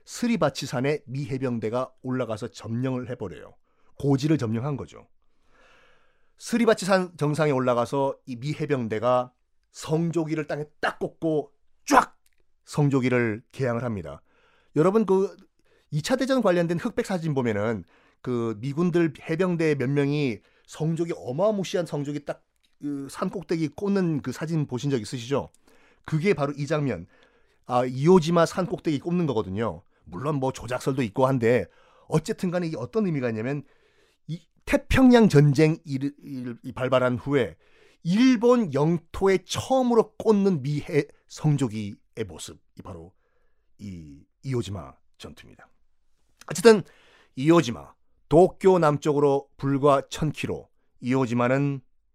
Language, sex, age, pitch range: Korean, male, 30-49, 125-170 Hz